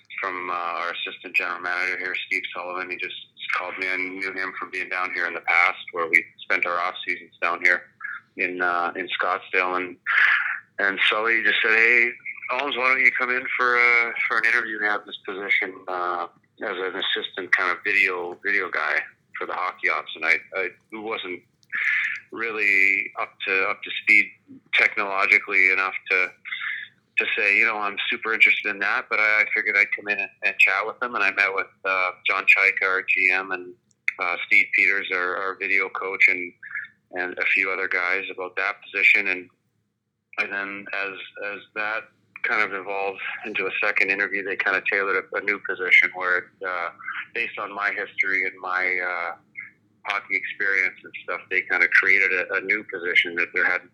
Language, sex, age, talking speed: English, male, 30-49, 195 wpm